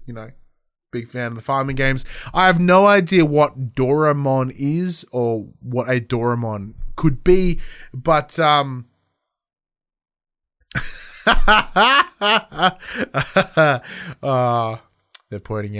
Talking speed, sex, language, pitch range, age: 100 wpm, male, English, 115-170 Hz, 20-39